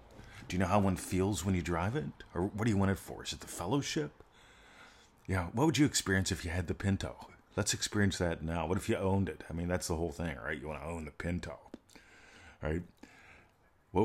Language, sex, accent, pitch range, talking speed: English, male, American, 75-95 Hz, 240 wpm